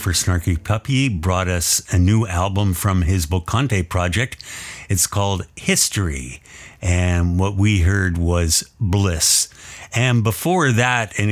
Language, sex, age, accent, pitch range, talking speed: English, male, 50-69, American, 90-110 Hz, 135 wpm